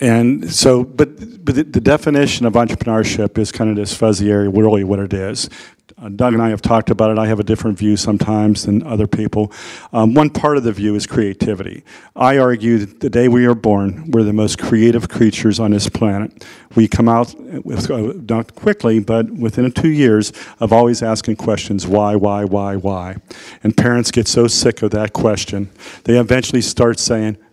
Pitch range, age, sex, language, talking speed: 105-125 Hz, 50-69, male, Vietnamese, 195 wpm